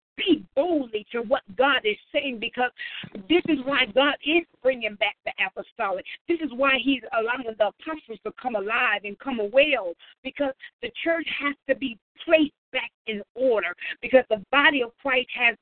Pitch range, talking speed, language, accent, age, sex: 220-280 Hz, 175 wpm, English, American, 50-69, female